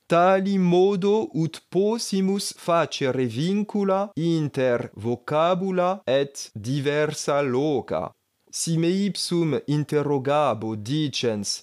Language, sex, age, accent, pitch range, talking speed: Greek, male, 30-49, French, 130-175 Hz, 85 wpm